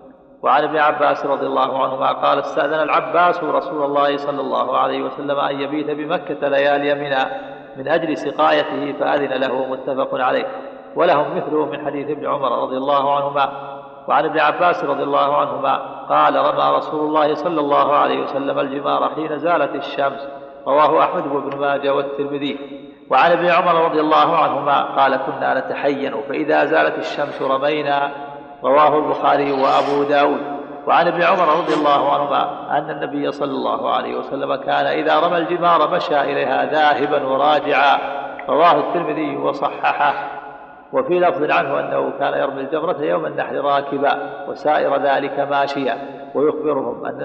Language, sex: Arabic, male